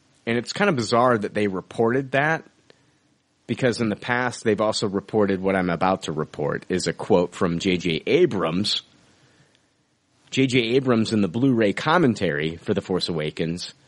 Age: 30-49